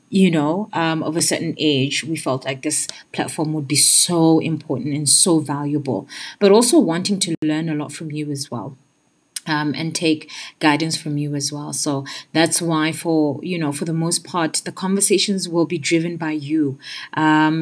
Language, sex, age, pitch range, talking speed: English, female, 30-49, 150-180 Hz, 190 wpm